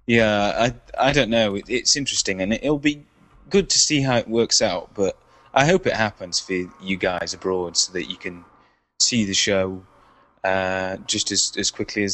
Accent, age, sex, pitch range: British, 20-39, male, 95-115 Hz